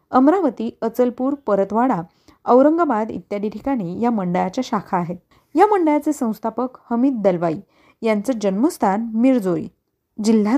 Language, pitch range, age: Marathi, 205-265 Hz, 30-49